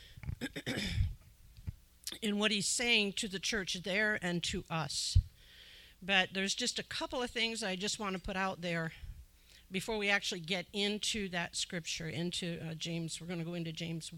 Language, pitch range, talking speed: English, 160-205 Hz, 175 wpm